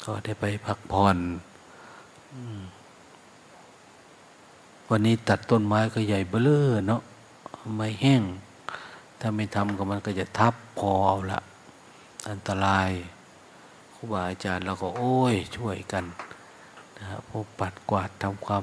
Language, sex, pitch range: Thai, male, 100-130 Hz